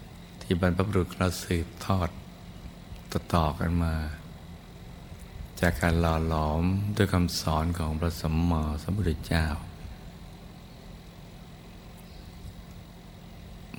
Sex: male